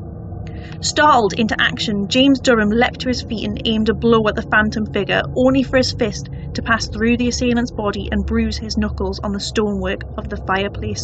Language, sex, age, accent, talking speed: English, female, 30-49, British, 200 wpm